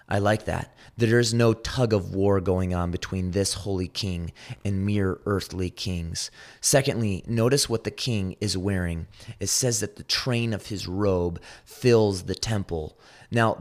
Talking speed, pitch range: 170 wpm, 90-115 Hz